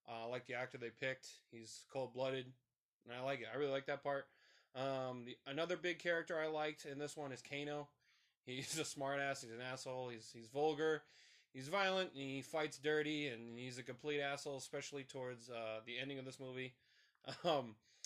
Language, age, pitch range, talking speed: English, 20-39, 120-145 Hz, 195 wpm